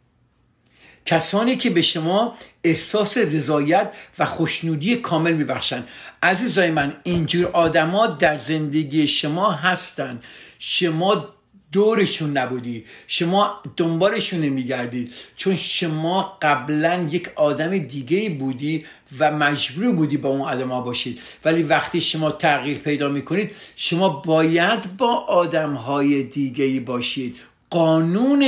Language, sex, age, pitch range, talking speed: Persian, male, 50-69, 145-190 Hz, 115 wpm